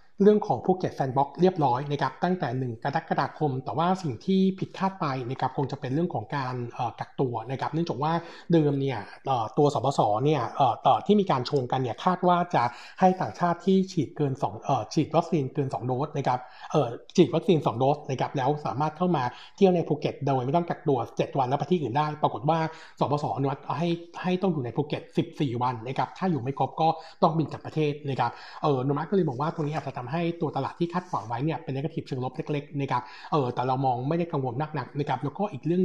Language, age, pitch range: Thai, 60-79, 135-170 Hz